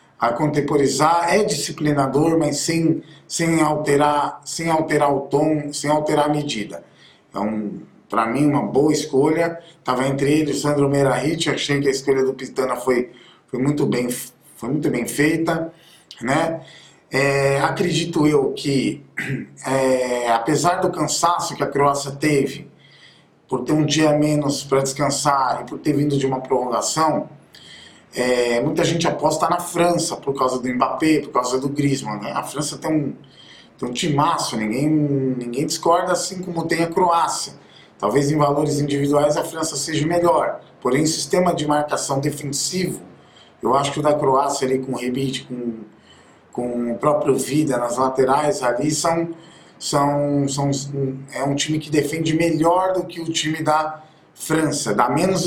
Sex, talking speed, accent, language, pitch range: male, 155 wpm, Brazilian, Portuguese, 135-155 Hz